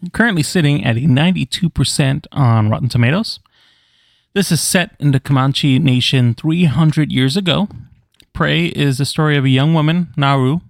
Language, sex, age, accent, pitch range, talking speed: English, male, 30-49, American, 115-150 Hz, 155 wpm